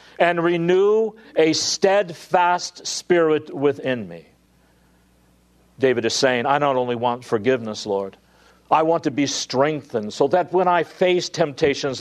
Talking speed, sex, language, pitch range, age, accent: 135 wpm, male, English, 130-185 Hz, 50-69, American